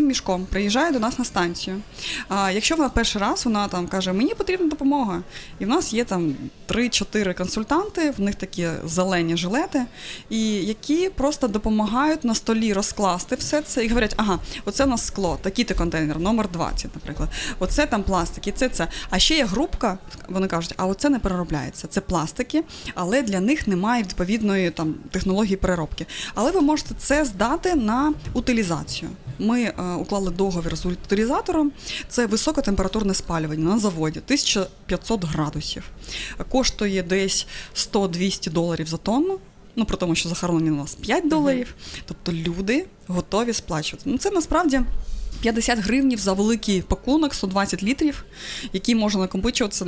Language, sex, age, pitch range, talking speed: Ukrainian, female, 20-39, 185-255 Hz, 155 wpm